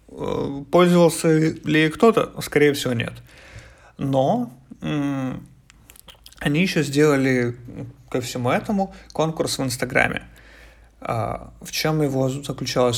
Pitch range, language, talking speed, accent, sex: 120-150 Hz, Ukrainian, 100 wpm, native, male